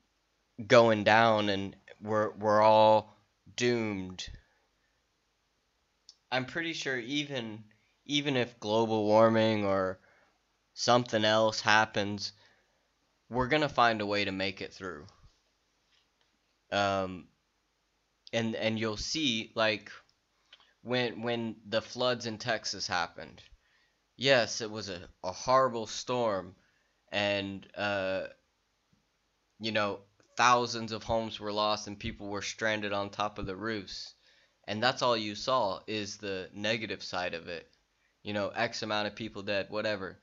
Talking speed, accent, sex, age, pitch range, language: 125 wpm, American, male, 20-39, 100-115 Hz, English